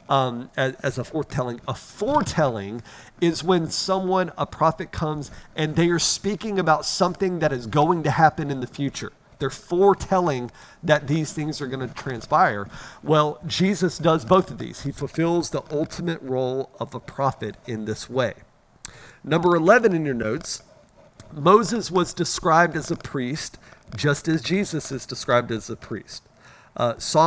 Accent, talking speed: American, 165 wpm